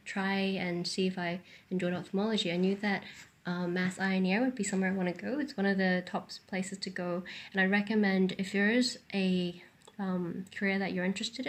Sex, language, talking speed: female, English, 220 wpm